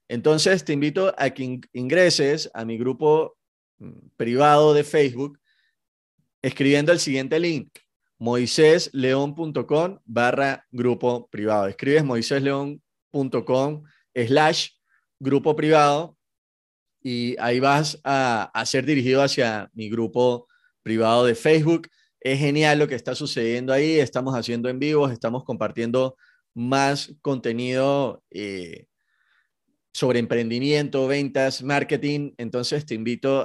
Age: 30-49